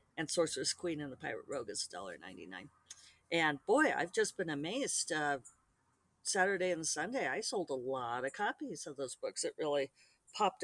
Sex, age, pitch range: female, 50-69, 150-195 Hz